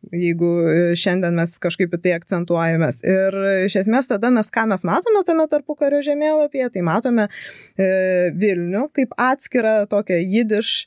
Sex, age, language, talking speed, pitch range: female, 20-39, English, 140 wpm, 190-270 Hz